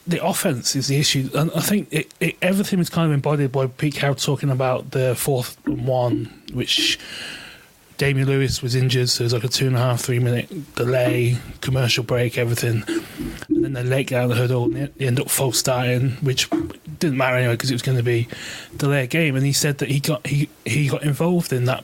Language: English